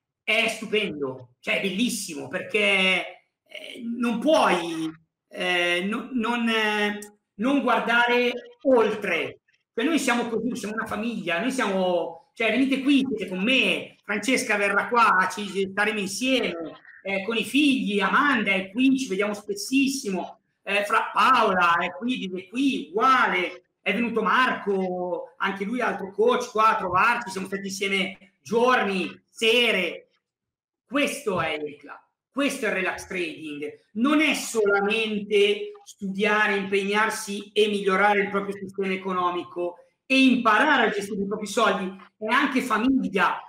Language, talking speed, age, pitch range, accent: Italian, 135 wpm, 40-59, 195-245 Hz, native